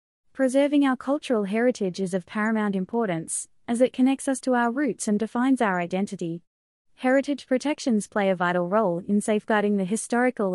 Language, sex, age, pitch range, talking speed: English, female, 20-39, 195-255 Hz, 165 wpm